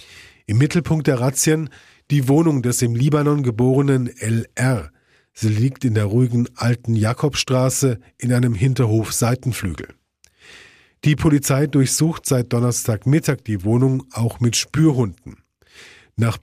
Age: 40-59